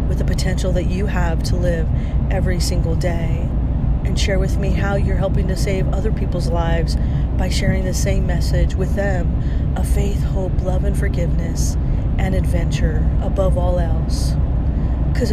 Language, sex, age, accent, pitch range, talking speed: English, female, 30-49, American, 65-75 Hz, 165 wpm